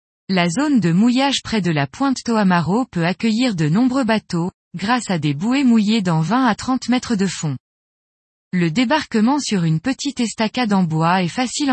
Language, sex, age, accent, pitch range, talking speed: French, female, 20-39, French, 175-245 Hz, 185 wpm